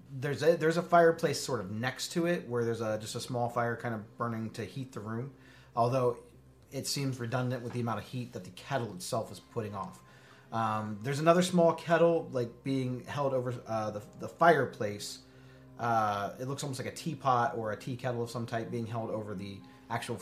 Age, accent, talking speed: 30-49, American, 215 wpm